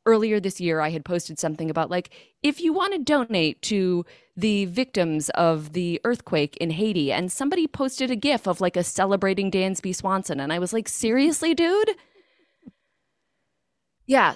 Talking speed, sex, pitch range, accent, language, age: 165 wpm, female, 155-220 Hz, American, English, 20-39